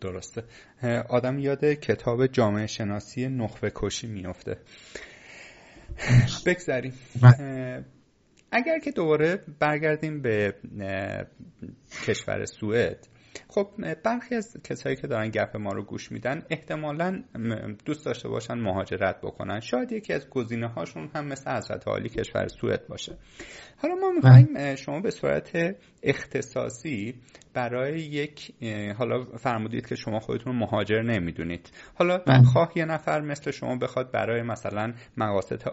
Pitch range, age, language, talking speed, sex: 115-150 Hz, 30-49, Persian, 120 wpm, male